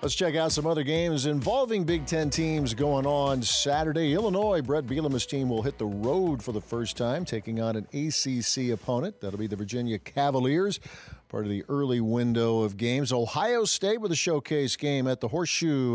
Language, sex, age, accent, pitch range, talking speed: English, male, 50-69, American, 115-155 Hz, 190 wpm